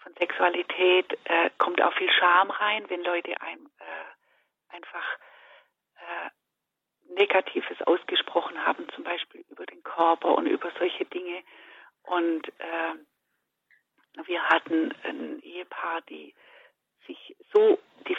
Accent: German